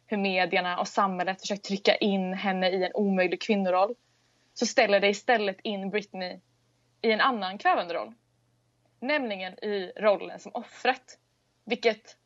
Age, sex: 20-39, female